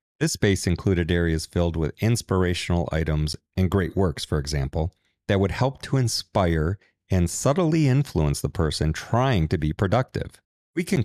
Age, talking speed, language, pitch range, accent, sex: 40-59, 160 wpm, English, 80-105 Hz, American, male